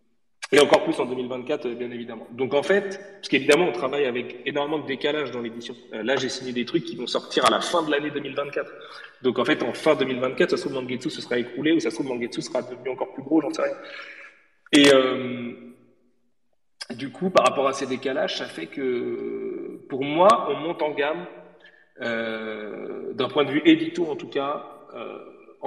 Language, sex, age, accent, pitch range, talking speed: French, male, 30-49, French, 125-165 Hz, 205 wpm